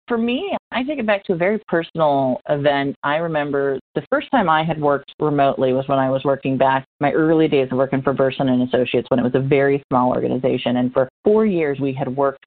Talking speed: 235 wpm